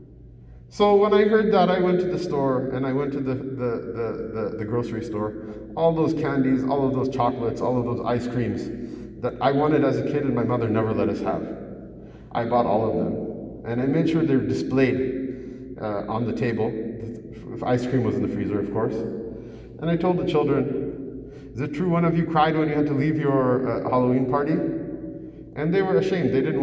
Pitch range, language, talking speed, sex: 120-165 Hz, English, 220 wpm, male